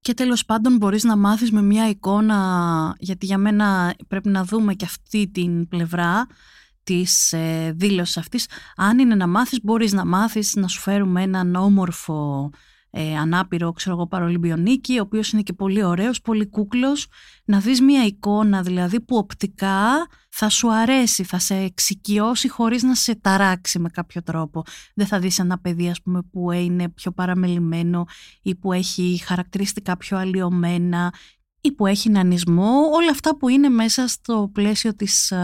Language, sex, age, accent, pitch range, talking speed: Greek, female, 30-49, native, 180-225 Hz, 160 wpm